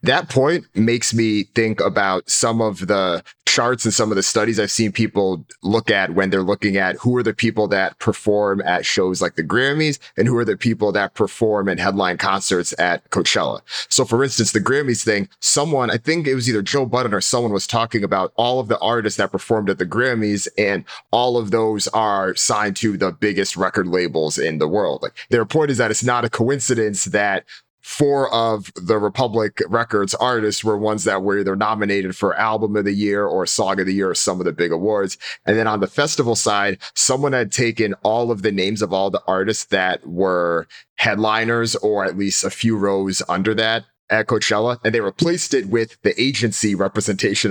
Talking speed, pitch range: 210 wpm, 100-120 Hz